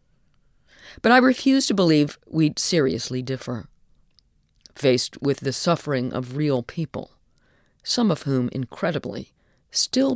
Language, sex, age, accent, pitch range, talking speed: English, female, 50-69, American, 130-160 Hz, 120 wpm